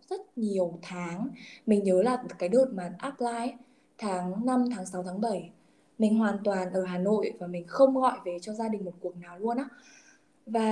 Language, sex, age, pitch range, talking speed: Vietnamese, female, 10-29, 185-245 Hz, 200 wpm